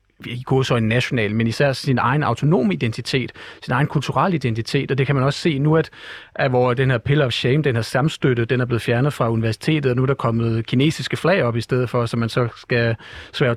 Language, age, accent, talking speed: Danish, 40-59, native, 240 wpm